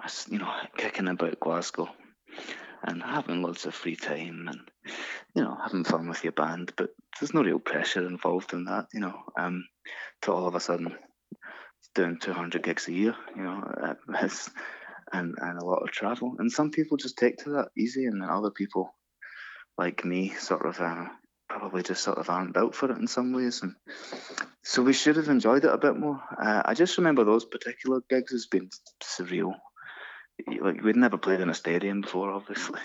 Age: 20-39